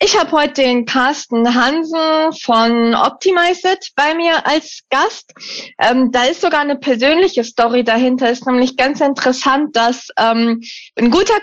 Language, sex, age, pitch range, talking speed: German, female, 20-39, 230-295 Hz, 145 wpm